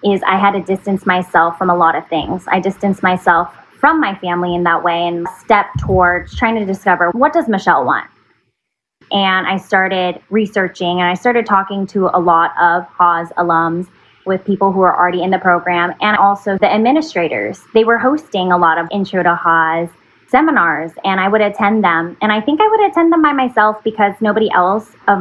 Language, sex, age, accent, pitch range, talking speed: English, female, 20-39, American, 175-215 Hz, 200 wpm